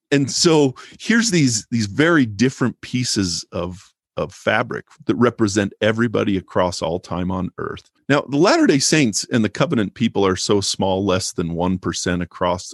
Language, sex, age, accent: English, male, 40-59, American